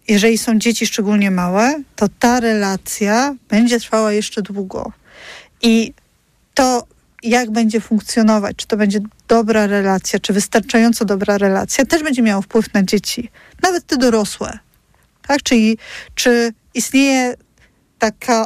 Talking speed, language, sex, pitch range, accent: 130 wpm, Polish, female, 215-250 Hz, native